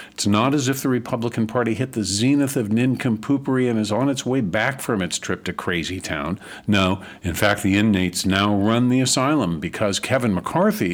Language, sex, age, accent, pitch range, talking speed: English, male, 50-69, American, 105-145 Hz, 195 wpm